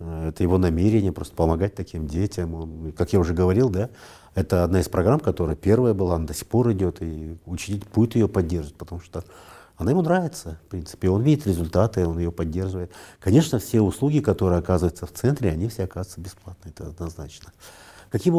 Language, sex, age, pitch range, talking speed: Russian, male, 50-69, 90-110 Hz, 185 wpm